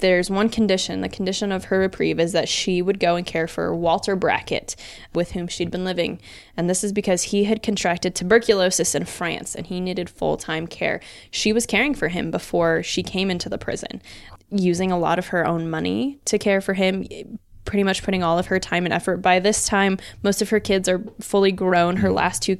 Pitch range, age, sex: 170-200 Hz, 20-39, female